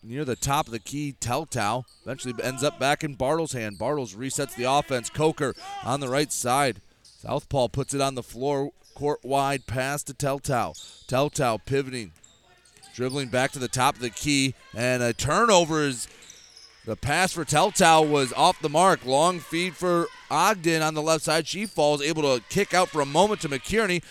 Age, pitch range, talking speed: 30-49, 125-160 Hz, 185 wpm